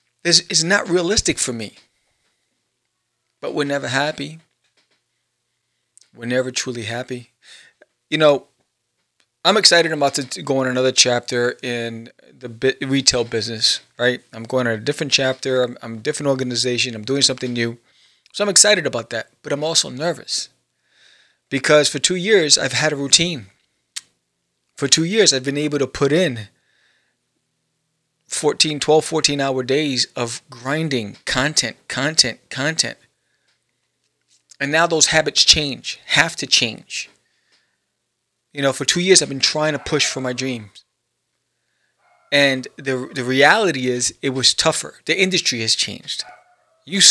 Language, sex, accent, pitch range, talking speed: English, male, American, 125-160 Hz, 140 wpm